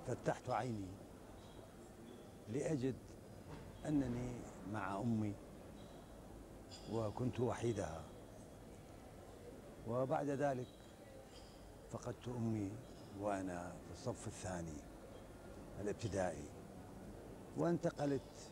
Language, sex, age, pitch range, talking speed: Arabic, male, 60-79, 95-125 Hz, 60 wpm